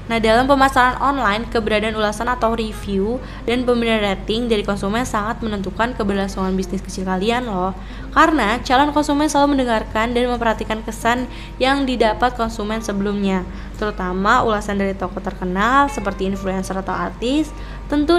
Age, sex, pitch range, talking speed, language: 20-39, female, 205-250 Hz, 140 wpm, Indonesian